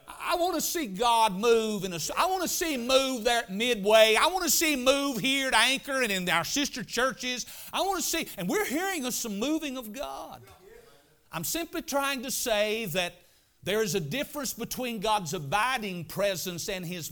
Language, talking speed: English, 205 wpm